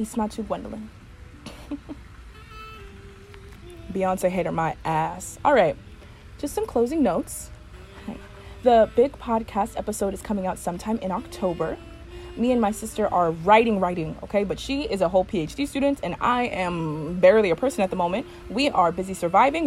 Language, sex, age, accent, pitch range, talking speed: English, female, 20-39, American, 175-225 Hz, 160 wpm